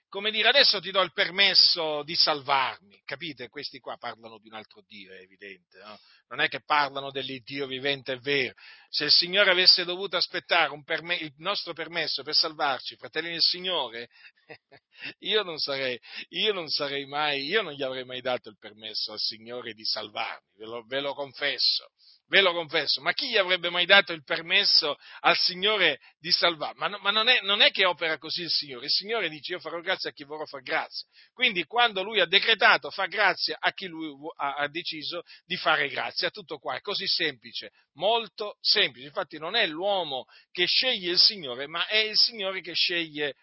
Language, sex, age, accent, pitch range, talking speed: Italian, male, 40-59, native, 140-185 Hz, 200 wpm